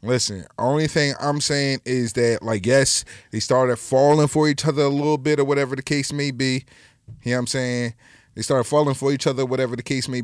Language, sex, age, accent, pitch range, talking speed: English, male, 20-39, American, 120-145 Hz, 230 wpm